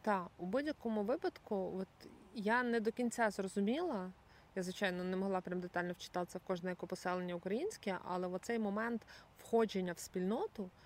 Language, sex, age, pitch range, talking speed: Ukrainian, female, 20-39, 180-220 Hz, 155 wpm